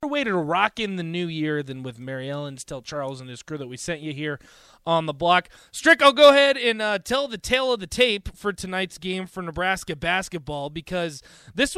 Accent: American